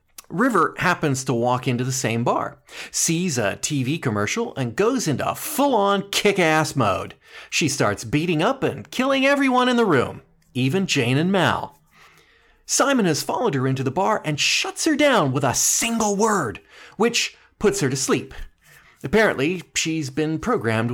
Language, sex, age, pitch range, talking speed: English, male, 40-59, 125-200 Hz, 160 wpm